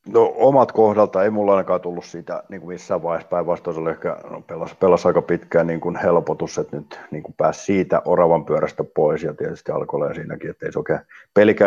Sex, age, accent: male, 50-69, native